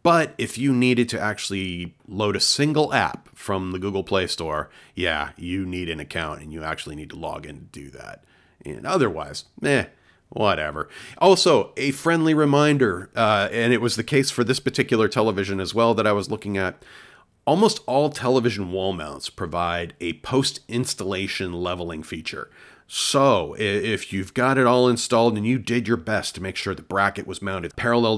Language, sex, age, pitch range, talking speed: English, male, 40-59, 90-120 Hz, 180 wpm